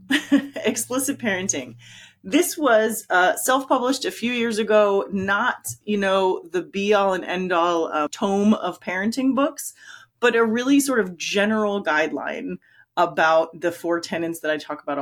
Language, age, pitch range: English, 30-49, 165-220 Hz